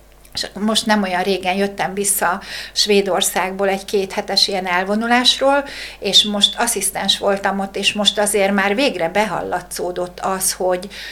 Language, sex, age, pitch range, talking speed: Hungarian, female, 60-79, 185-215 Hz, 135 wpm